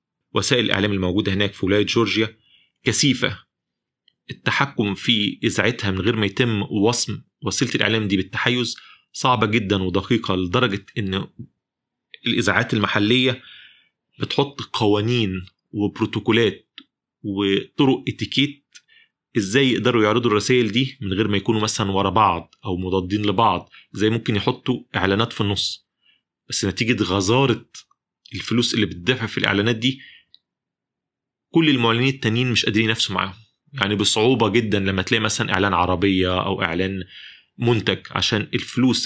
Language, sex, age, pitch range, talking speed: Arabic, male, 30-49, 100-120 Hz, 125 wpm